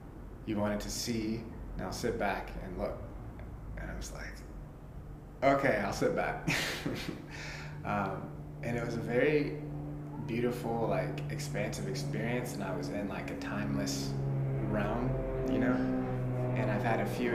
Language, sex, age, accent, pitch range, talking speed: English, male, 20-39, American, 95-120 Hz, 145 wpm